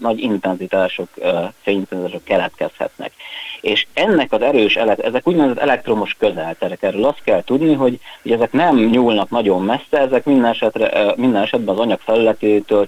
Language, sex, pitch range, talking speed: Hungarian, male, 95-120 Hz, 145 wpm